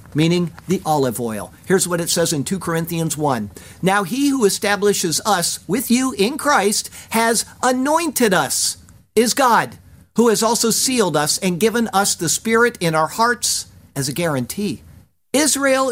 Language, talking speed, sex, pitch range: English, 160 wpm, male, 140-205 Hz